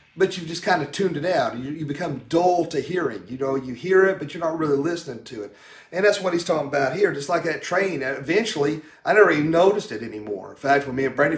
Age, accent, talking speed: 40-59, American, 265 wpm